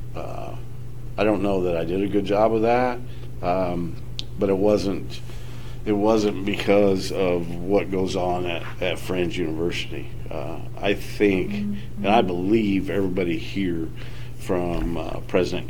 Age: 50-69